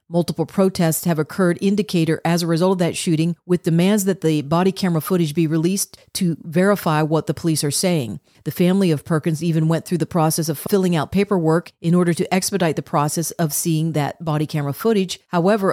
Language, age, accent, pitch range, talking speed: English, 40-59, American, 160-185 Hz, 200 wpm